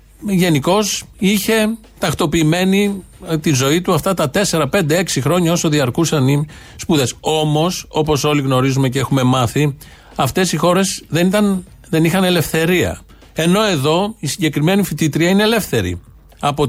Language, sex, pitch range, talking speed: Greek, male, 130-175 Hz, 130 wpm